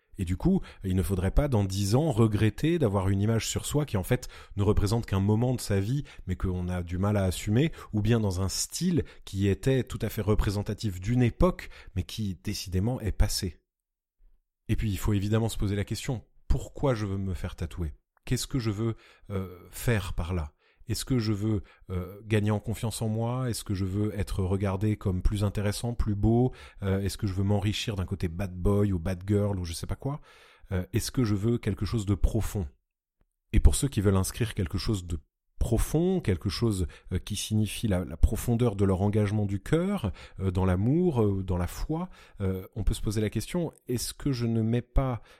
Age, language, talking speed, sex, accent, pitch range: 30-49, French, 215 wpm, male, French, 95-120 Hz